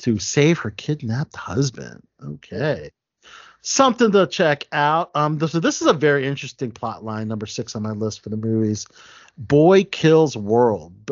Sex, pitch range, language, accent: male, 115-150 Hz, English, American